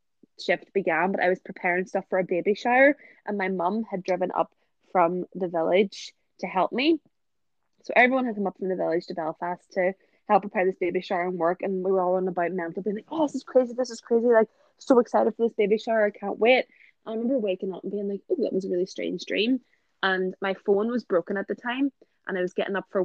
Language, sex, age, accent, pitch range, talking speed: English, female, 20-39, Irish, 175-205 Hz, 250 wpm